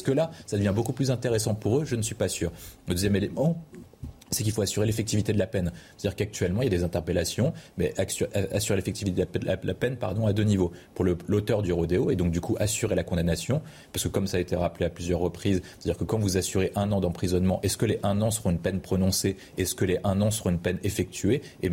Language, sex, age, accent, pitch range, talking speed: French, male, 30-49, French, 90-110 Hz, 260 wpm